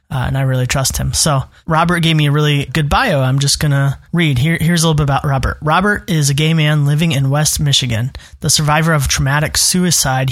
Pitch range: 140-170 Hz